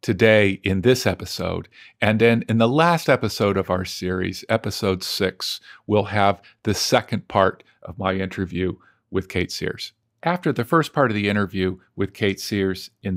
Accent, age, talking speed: American, 50-69, 170 wpm